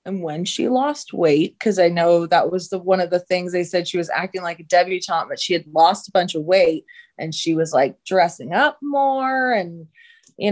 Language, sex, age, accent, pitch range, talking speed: English, female, 20-39, American, 175-230 Hz, 230 wpm